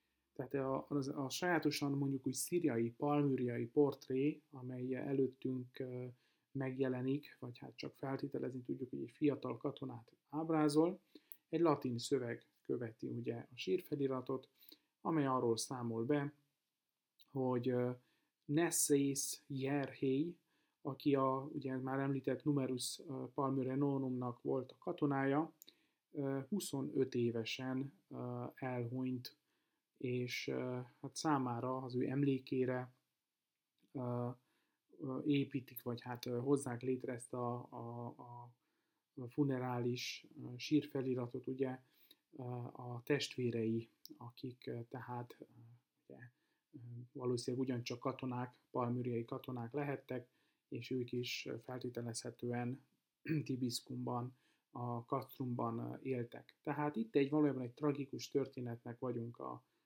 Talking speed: 100 wpm